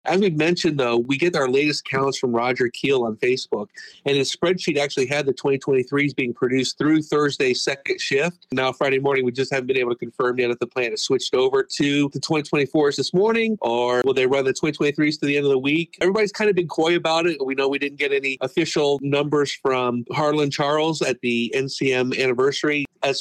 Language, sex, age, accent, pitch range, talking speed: English, male, 40-59, American, 135-170 Hz, 215 wpm